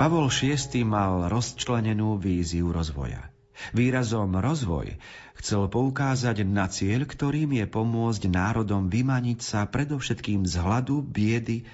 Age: 40-59